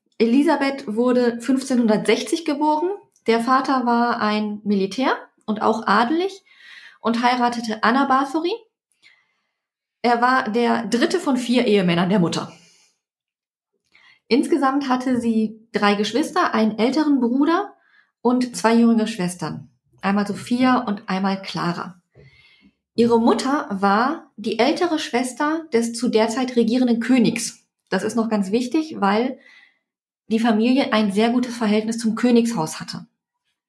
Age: 20-39